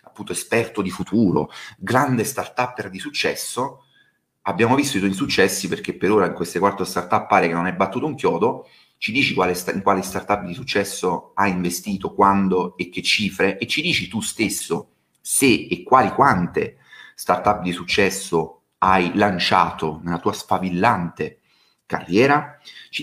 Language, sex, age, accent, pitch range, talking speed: Italian, male, 30-49, native, 90-110 Hz, 155 wpm